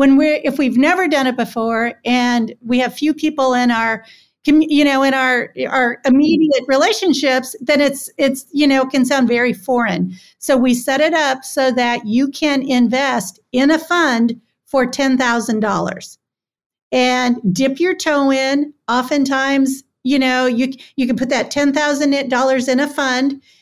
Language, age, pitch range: English, 50-69, 250-285 Hz